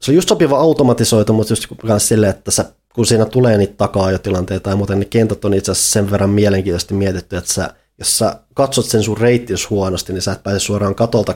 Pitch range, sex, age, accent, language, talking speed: 95-110 Hz, male, 20-39, native, Finnish, 220 wpm